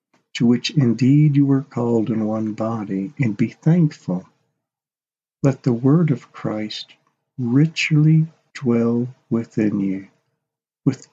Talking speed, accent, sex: 120 wpm, American, male